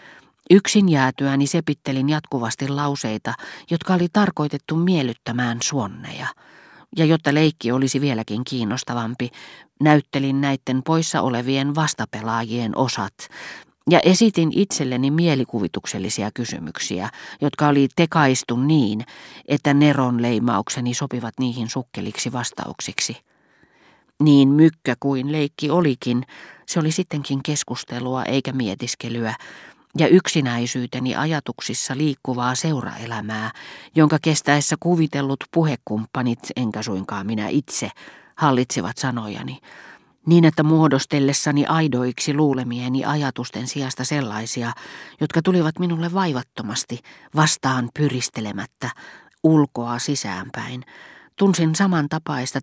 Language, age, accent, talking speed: Finnish, 40-59, native, 95 wpm